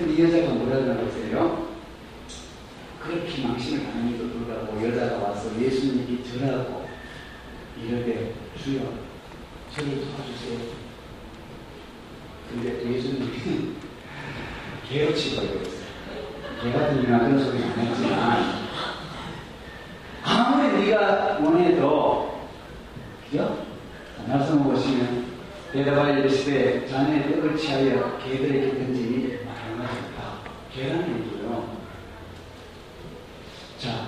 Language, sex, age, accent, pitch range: Korean, male, 40-59, native, 120-150 Hz